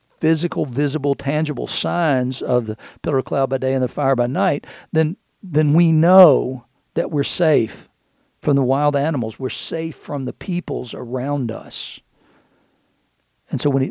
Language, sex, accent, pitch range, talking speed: English, male, American, 125-155 Hz, 160 wpm